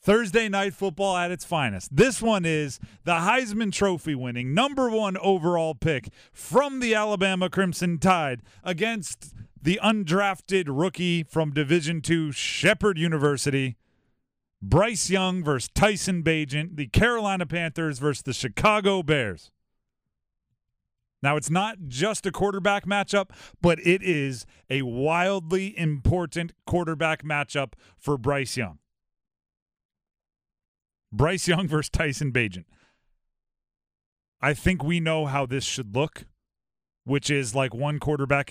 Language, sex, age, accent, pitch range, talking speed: English, male, 40-59, American, 135-185 Hz, 125 wpm